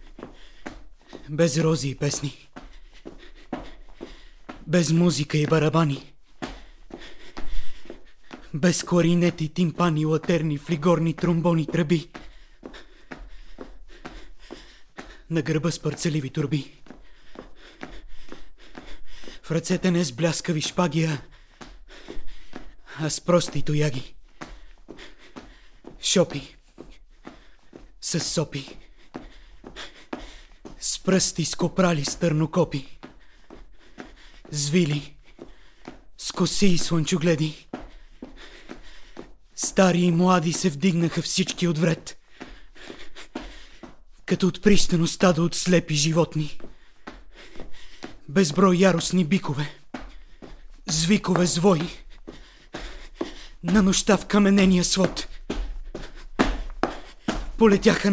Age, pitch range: 30-49, 155-180 Hz